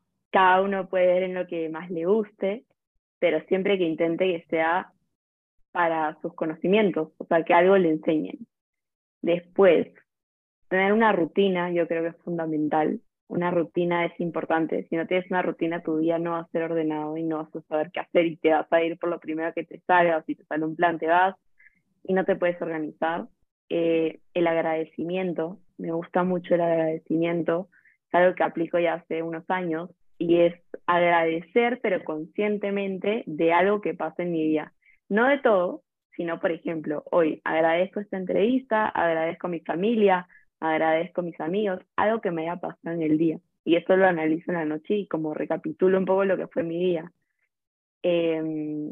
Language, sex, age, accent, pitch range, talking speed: Spanish, female, 20-39, Argentinian, 160-185 Hz, 190 wpm